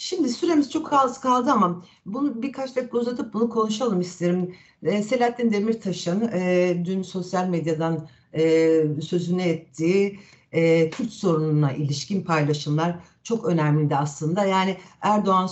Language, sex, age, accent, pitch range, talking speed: Turkish, female, 60-79, native, 165-240 Hz, 110 wpm